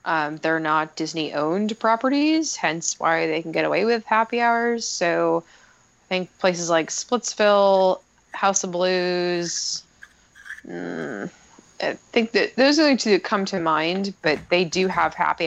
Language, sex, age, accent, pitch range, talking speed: English, female, 20-39, American, 160-200 Hz, 150 wpm